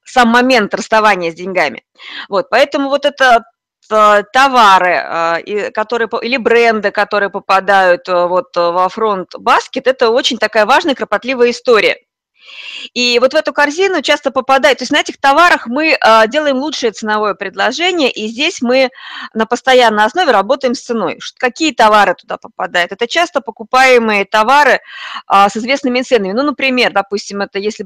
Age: 20-39